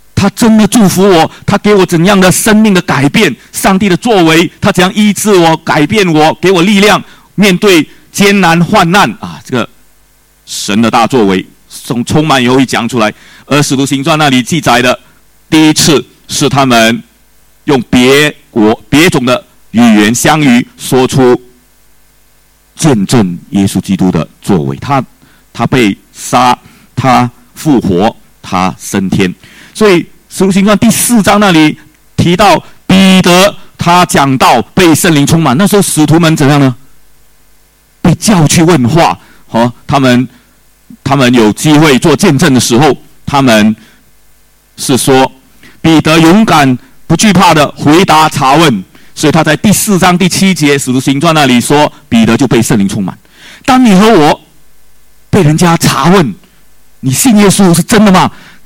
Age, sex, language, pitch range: 50-69, male, English, 130-195 Hz